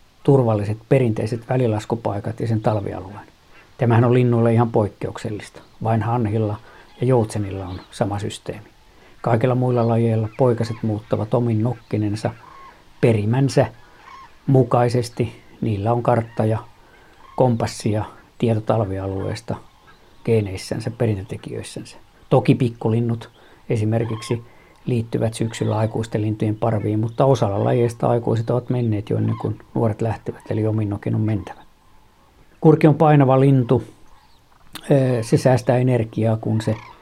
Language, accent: Finnish, native